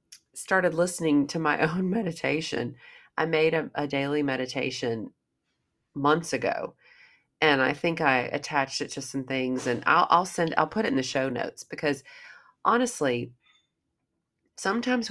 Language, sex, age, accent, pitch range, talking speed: English, female, 40-59, American, 140-165 Hz, 145 wpm